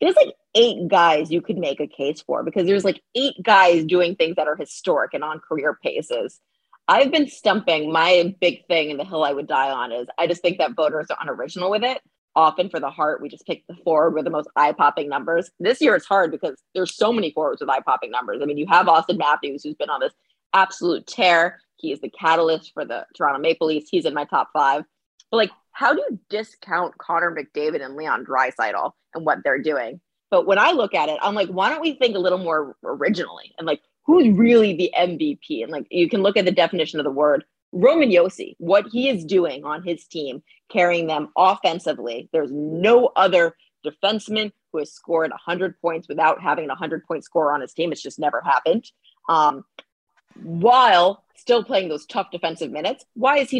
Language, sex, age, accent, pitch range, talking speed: English, female, 20-39, American, 165-225 Hz, 215 wpm